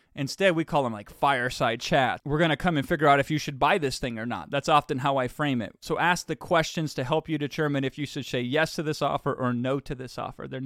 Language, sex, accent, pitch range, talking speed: English, male, American, 135-165 Hz, 275 wpm